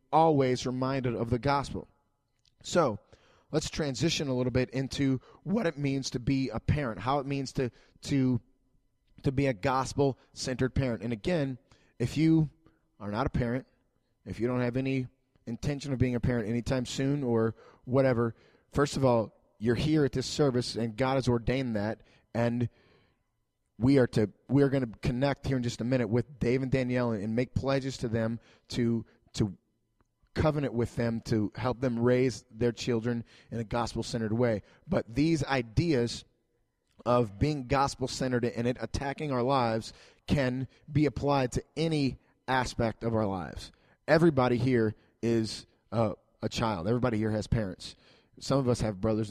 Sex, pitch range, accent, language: male, 115-135 Hz, American, English